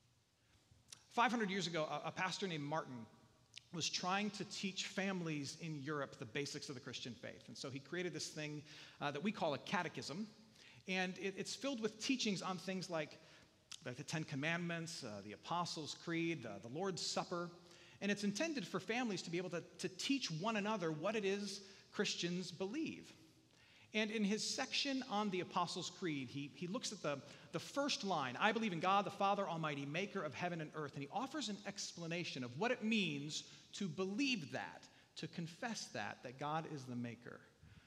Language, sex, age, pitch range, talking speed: English, male, 40-59, 145-200 Hz, 185 wpm